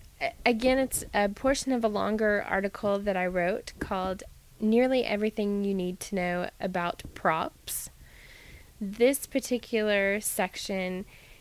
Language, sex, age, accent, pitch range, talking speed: English, female, 20-39, American, 185-225 Hz, 120 wpm